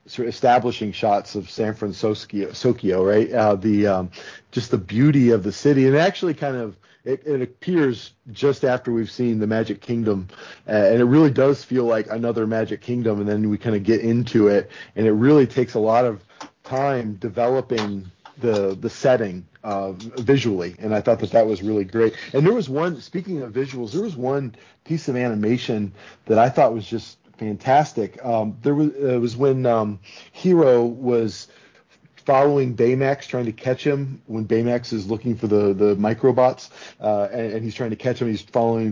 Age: 40-59